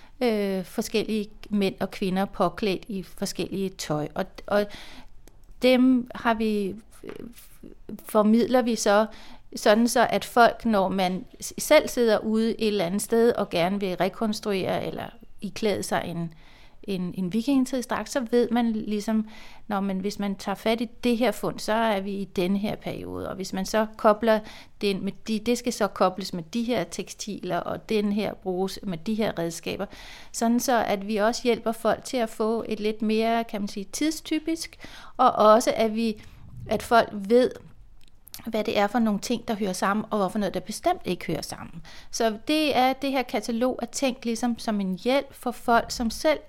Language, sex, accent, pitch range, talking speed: Danish, female, native, 195-235 Hz, 185 wpm